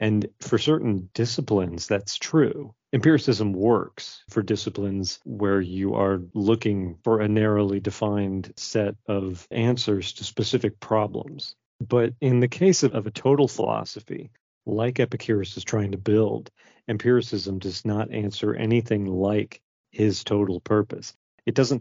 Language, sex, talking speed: English, male, 135 wpm